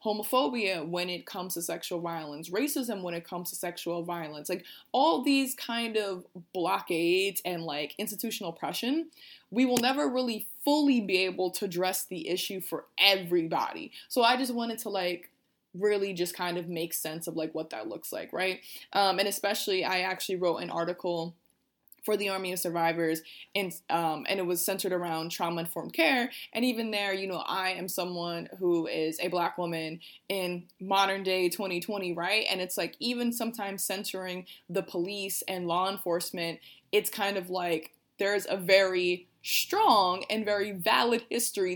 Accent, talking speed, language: American, 170 wpm, English